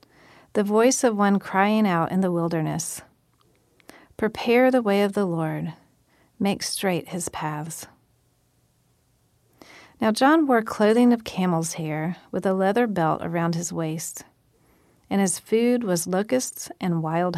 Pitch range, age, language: 165-205 Hz, 40-59, English